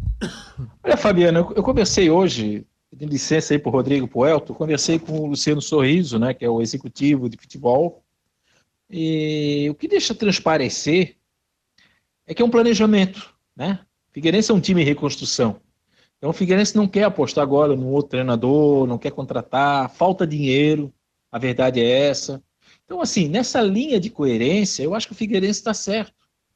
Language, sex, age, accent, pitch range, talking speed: Portuguese, male, 60-79, Brazilian, 140-195 Hz, 165 wpm